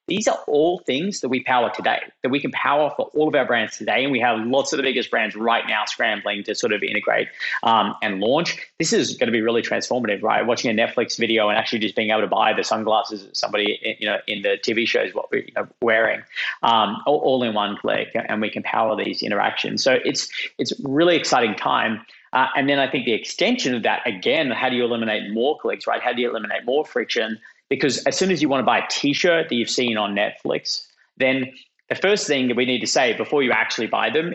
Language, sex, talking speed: English, male, 240 wpm